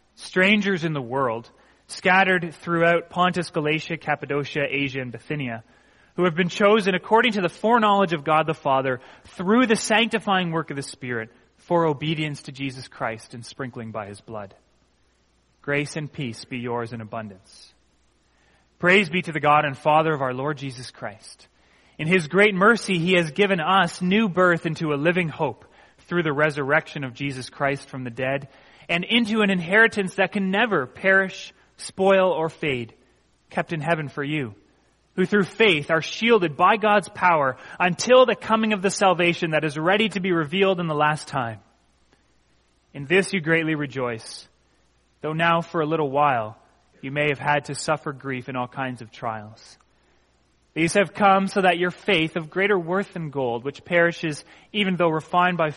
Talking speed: 175 wpm